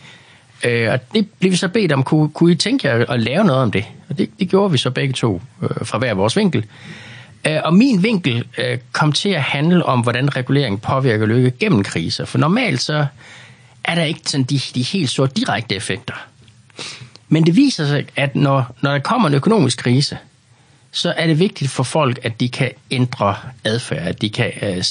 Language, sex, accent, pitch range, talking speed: Danish, male, native, 115-150 Hz, 205 wpm